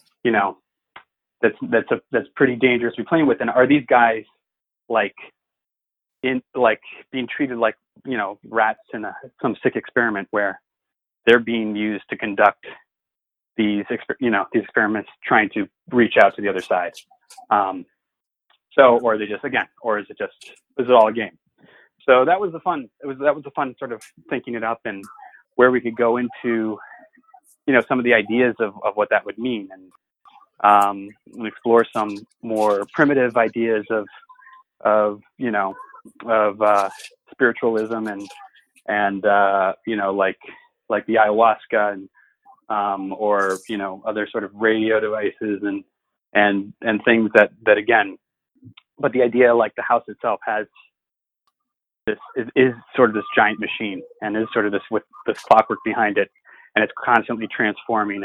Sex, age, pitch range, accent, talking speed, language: male, 30-49, 105-125 Hz, American, 175 wpm, English